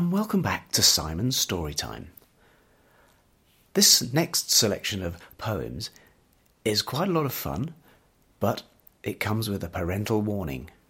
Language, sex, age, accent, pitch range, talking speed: English, male, 40-59, British, 95-155 Hz, 130 wpm